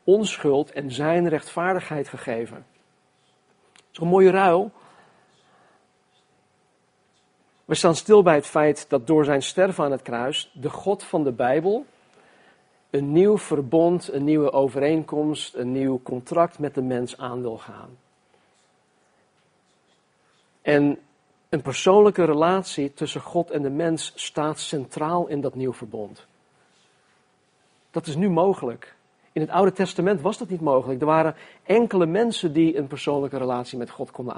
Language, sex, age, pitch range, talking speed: Dutch, male, 50-69, 140-180 Hz, 140 wpm